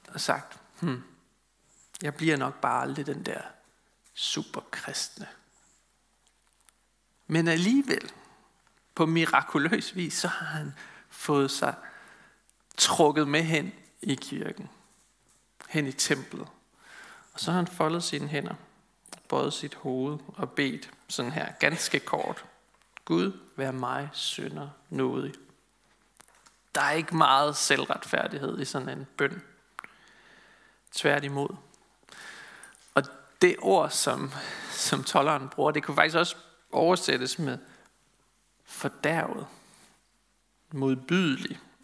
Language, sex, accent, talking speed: Danish, male, native, 110 wpm